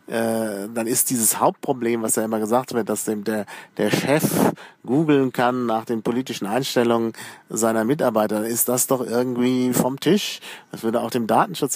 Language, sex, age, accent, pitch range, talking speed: German, male, 40-59, German, 115-140 Hz, 165 wpm